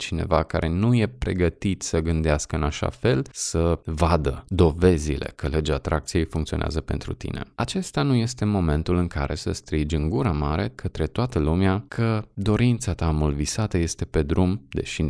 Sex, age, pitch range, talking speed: male, 20-39, 80-95 Hz, 165 wpm